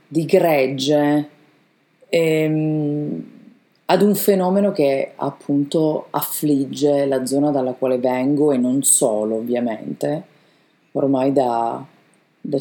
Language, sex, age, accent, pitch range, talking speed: Italian, female, 30-49, native, 140-165 Hz, 100 wpm